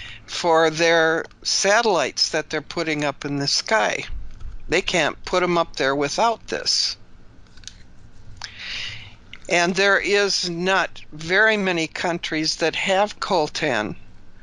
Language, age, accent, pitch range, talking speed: English, 60-79, American, 150-195 Hz, 115 wpm